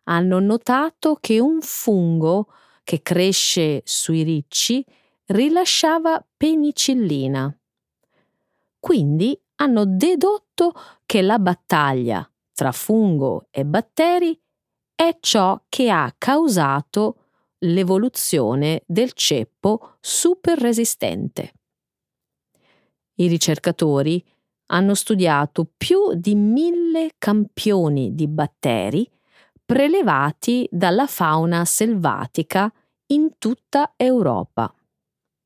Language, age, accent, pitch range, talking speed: Italian, 40-59, native, 170-270 Hz, 80 wpm